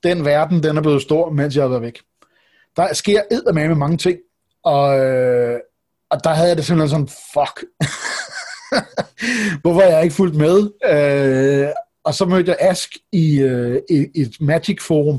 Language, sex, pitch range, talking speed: Danish, male, 140-170 Hz, 150 wpm